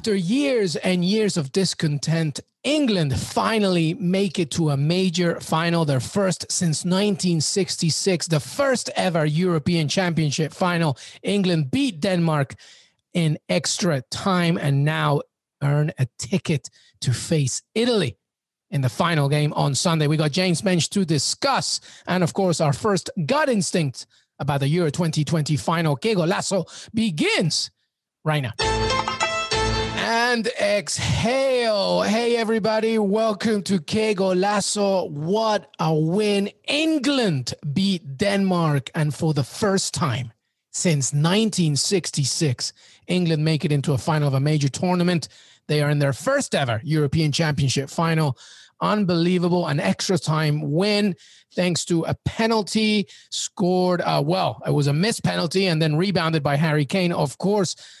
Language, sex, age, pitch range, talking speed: English, male, 30-49, 150-195 Hz, 135 wpm